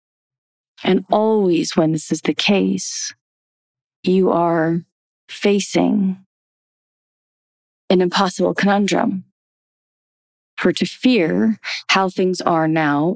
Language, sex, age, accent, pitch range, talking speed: English, female, 30-49, American, 155-195 Hz, 90 wpm